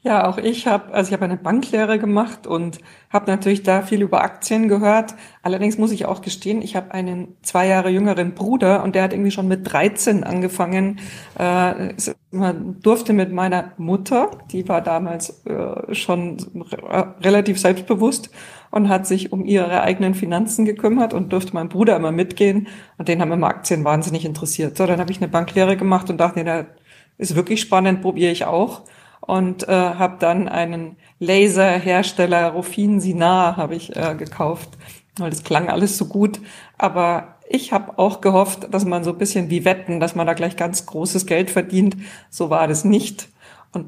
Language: German